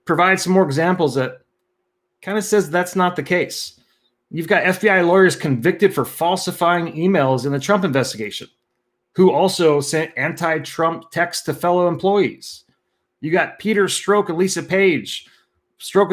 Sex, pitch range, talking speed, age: male, 155-195 Hz, 150 wpm, 30-49